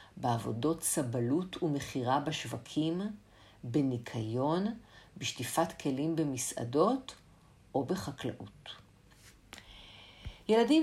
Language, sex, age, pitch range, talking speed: Hebrew, female, 50-69, 150-225 Hz, 60 wpm